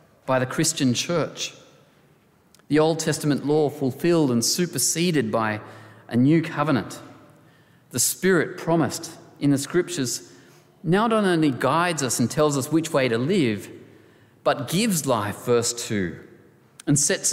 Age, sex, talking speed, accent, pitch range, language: 30-49, male, 140 wpm, Australian, 125-160 Hz, English